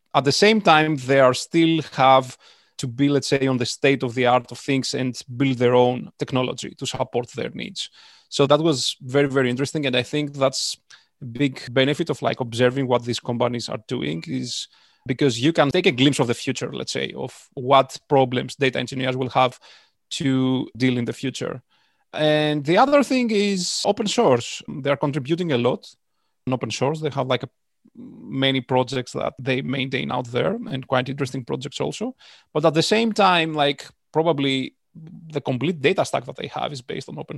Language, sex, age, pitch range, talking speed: English, male, 30-49, 125-150 Hz, 195 wpm